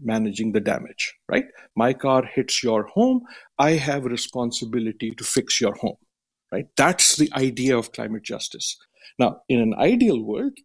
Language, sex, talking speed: English, male, 160 wpm